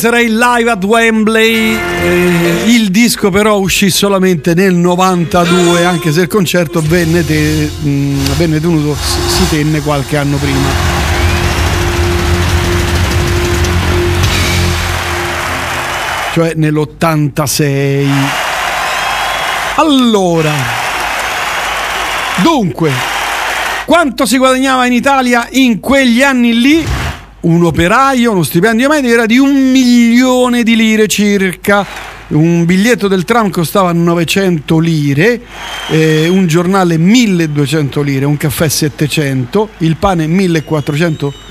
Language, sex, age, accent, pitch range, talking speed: Italian, male, 50-69, native, 145-205 Hz, 95 wpm